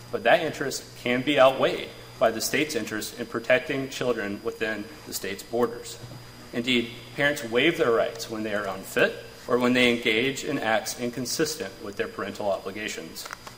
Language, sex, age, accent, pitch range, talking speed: English, male, 30-49, American, 115-140 Hz, 165 wpm